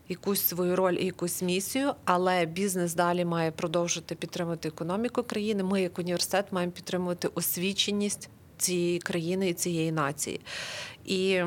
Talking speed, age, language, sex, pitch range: 135 wpm, 30-49, Ukrainian, female, 175-200 Hz